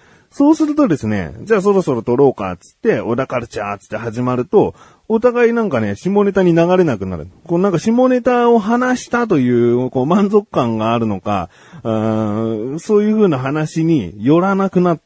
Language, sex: Japanese, male